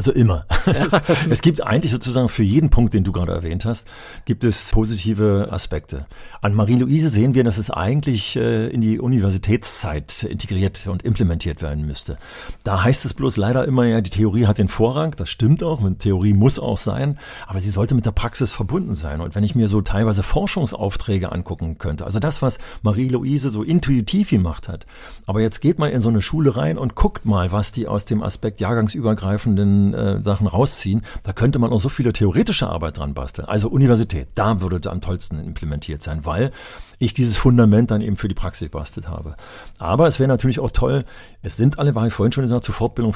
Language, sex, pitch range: German, male, 95-125 Hz